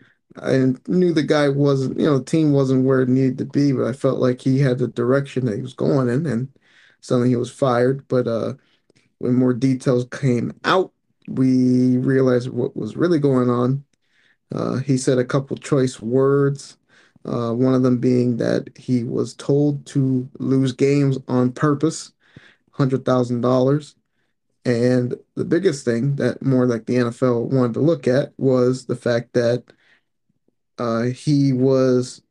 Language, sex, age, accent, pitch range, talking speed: English, male, 30-49, American, 125-140 Hz, 165 wpm